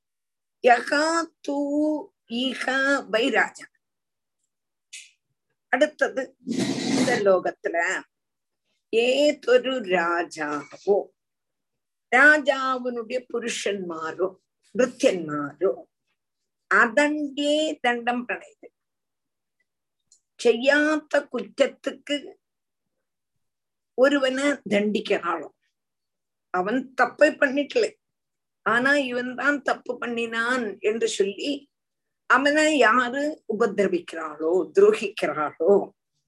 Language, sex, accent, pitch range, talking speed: Tamil, female, native, 215-295 Hz, 50 wpm